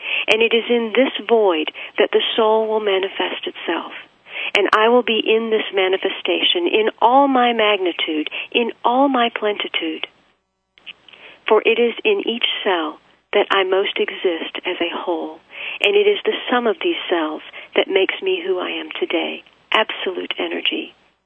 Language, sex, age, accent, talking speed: English, female, 40-59, American, 160 wpm